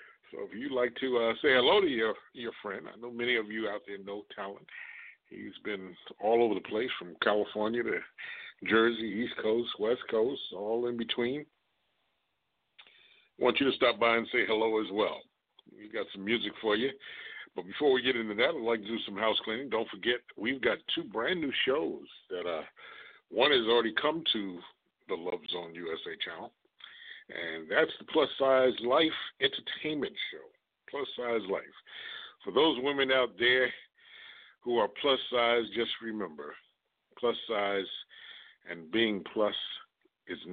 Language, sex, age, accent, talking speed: English, male, 60-79, American, 170 wpm